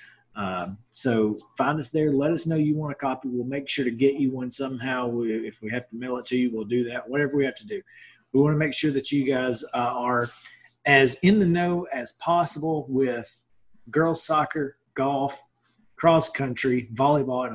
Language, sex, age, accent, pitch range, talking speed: English, male, 30-49, American, 120-145 Hz, 205 wpm